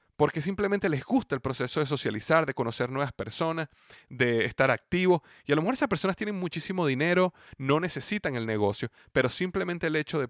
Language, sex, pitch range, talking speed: Spanish, male, 120-160 Hz, 190 wpm